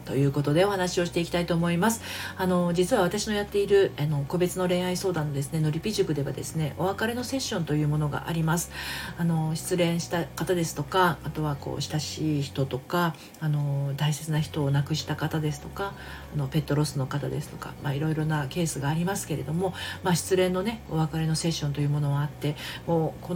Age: 40-59